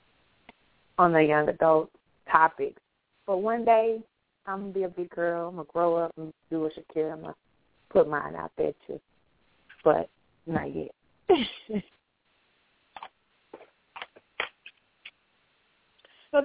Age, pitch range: 30-49, 150-195 Hz